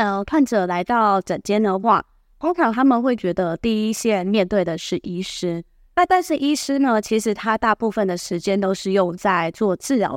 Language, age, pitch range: Chinese, 20-39, 185-245 Hz